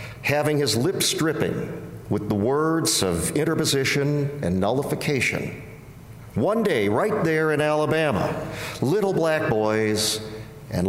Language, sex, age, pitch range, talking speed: English, male, 50-69, 110-145 Hz, 115 wpm